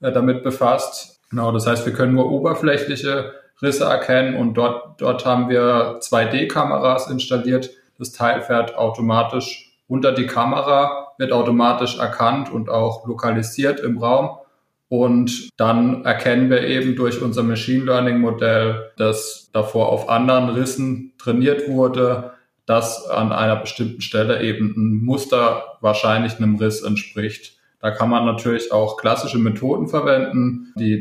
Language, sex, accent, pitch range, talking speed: English, male, German, 110-125 Hz, 135 wpm